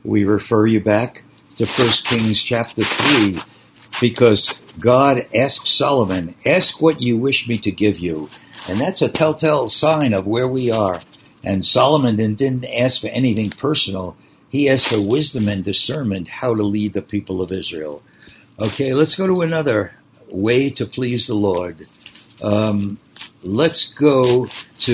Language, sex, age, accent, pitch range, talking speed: English, male, 60-79, American, 105-135 Hz, 155 wpm